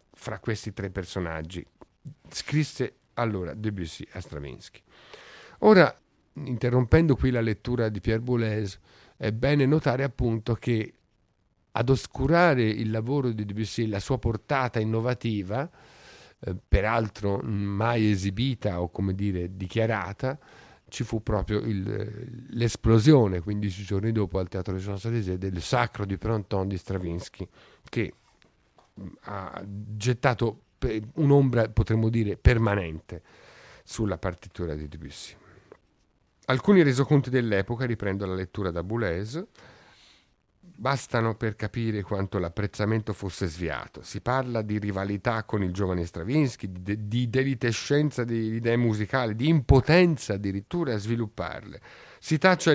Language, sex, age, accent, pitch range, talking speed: Italian, male, 50-69, native, 100-125 Hz, 120 wpm